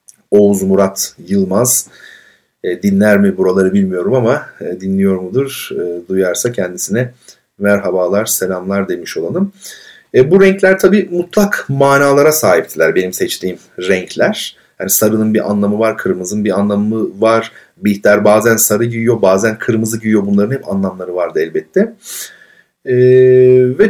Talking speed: 130 wpm